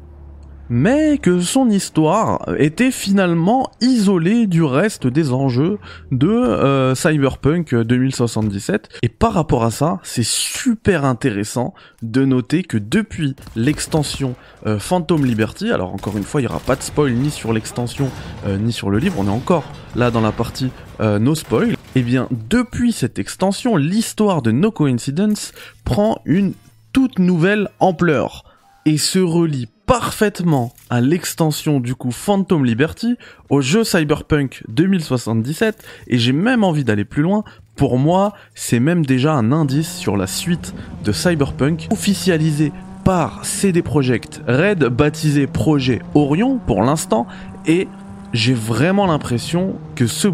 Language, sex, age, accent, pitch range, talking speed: French, male, 20-39, French, 120-180 Hz, 145 wpm